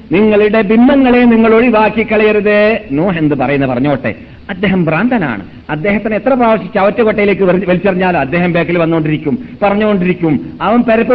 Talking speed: 115 wpm